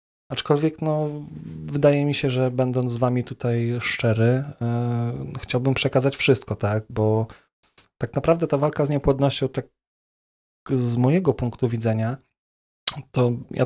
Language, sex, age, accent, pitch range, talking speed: Polish, male, 20-39, native, 115-135 Hz, 130 wpm